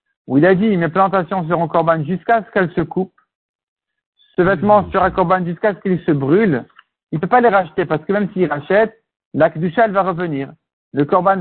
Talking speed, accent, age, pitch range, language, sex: 210 wpm, French, 60-79, 155-200 Hz, French, male